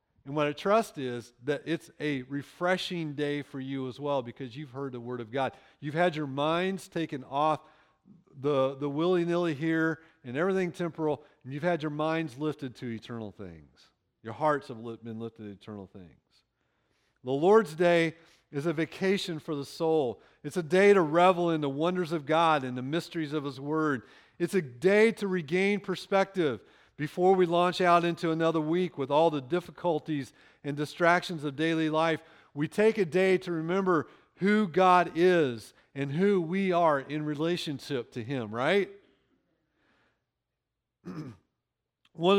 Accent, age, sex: American, 40-59, male